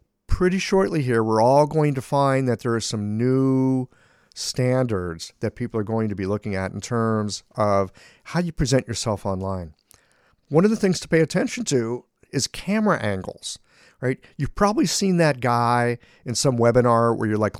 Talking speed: 180 wpm